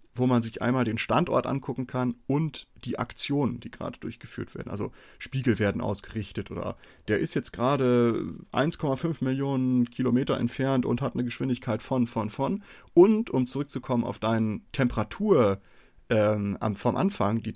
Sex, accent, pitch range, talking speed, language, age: male, German, 115-135 Hz, 155 wpm, German, 30-49